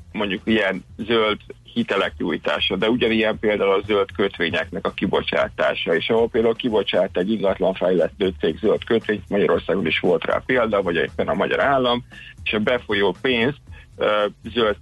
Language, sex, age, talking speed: Hungarian, male, 50-69, 155 wpm